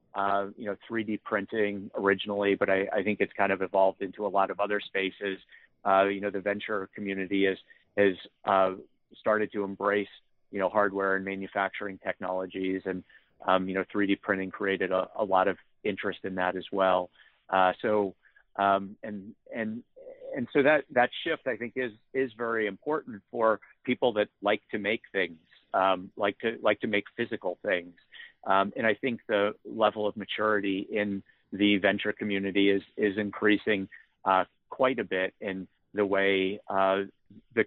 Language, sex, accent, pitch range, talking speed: English, male, American, 95-105 Hz, 175 wpm